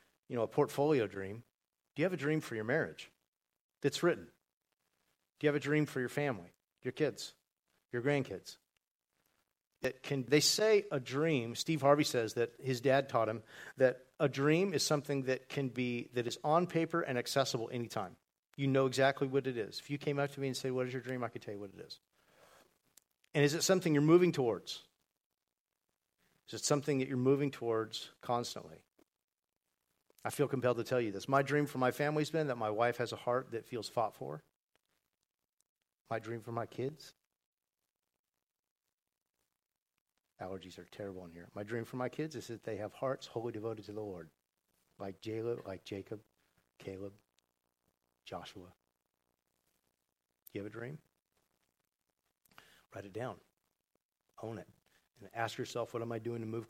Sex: male